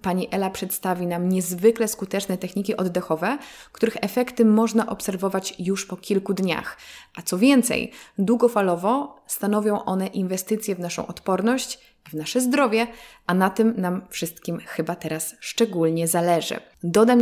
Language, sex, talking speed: Polish, female, 140 wpm